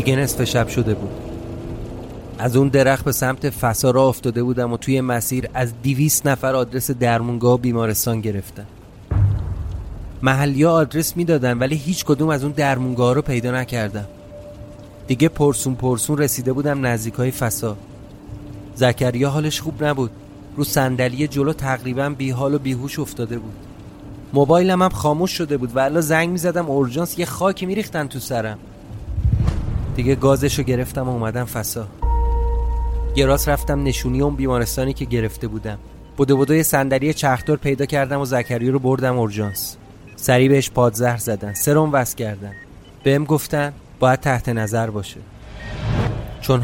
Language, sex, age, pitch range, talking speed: Persian, male, 30-49, 115-140 Hz, 145 wpm